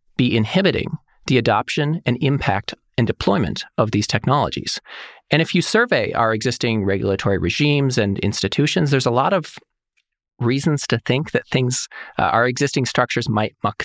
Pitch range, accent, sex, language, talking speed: 115-150 Hz, American, male, English, 155 wpm